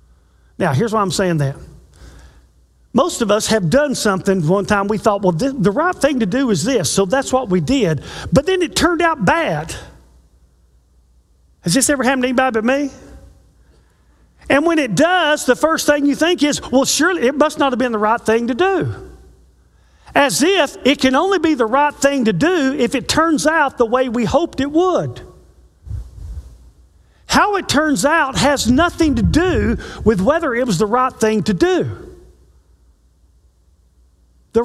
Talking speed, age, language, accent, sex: 180 wpm, 40-59, English, American, male